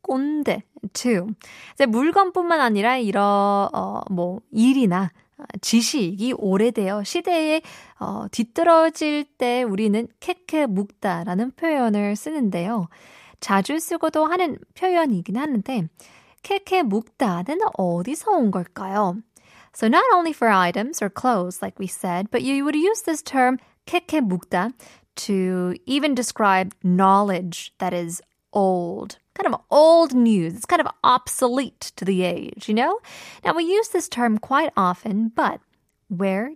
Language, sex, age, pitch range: Korean, female, 20-39, 200-310 Hz